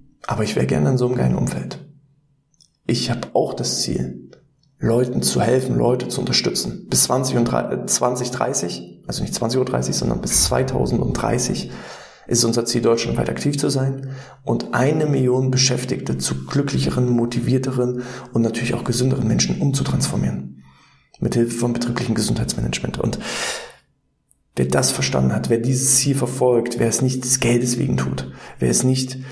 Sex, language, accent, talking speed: male, German, German, 145 wpm